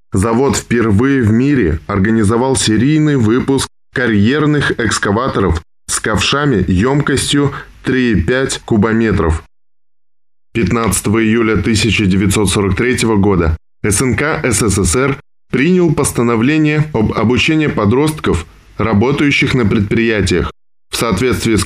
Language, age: Russian, 10-29